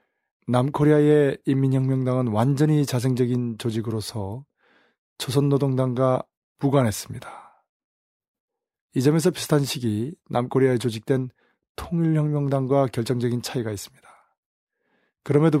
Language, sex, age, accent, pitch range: Korean, male, 20-39, native, 120-140 Hz